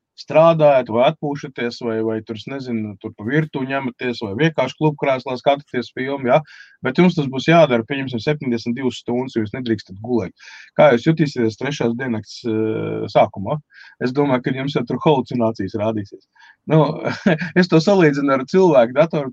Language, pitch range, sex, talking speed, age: English, 115-150 Hz, male, 170 wpm, 20-39